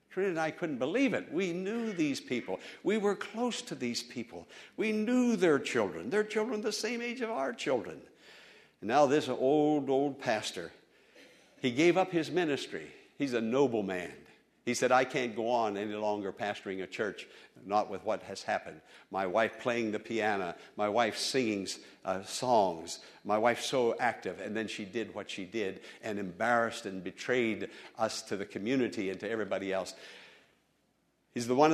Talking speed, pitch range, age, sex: 180 wpm, 100-155 Hz, 60-79, male